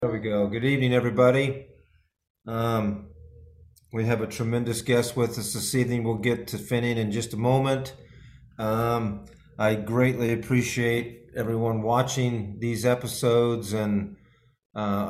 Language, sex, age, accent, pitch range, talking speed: English, male, 40-59, American, 110-135 Hz, 135 wpm